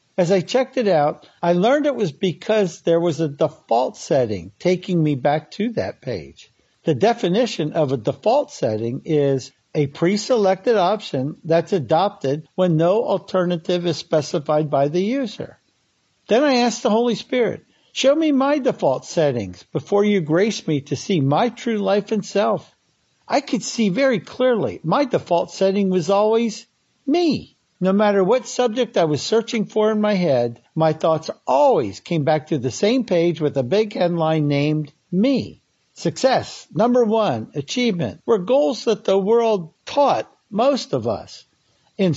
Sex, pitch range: male, 155-230 Hz